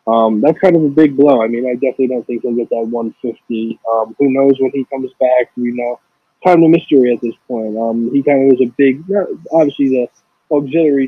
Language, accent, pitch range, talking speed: English, American, 115-140 Hz, 240 wpm